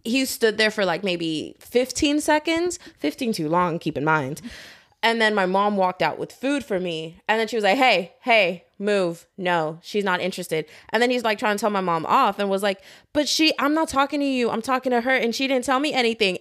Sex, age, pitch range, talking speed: female, 20-39, 180-260 Hz, 240 wpm